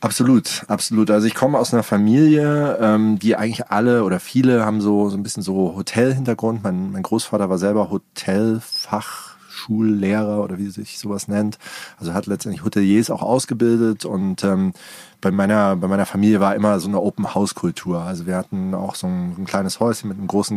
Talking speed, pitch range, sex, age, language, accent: 185 wpm, 95-115 Hz, male, 30-49, German, German